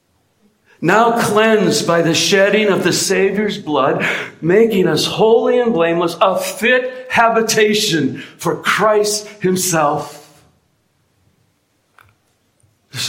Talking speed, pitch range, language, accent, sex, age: 95 wpm, 130-185 Hz, English, American, male, 60-79